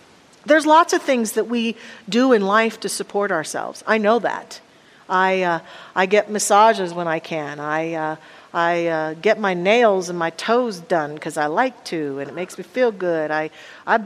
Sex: female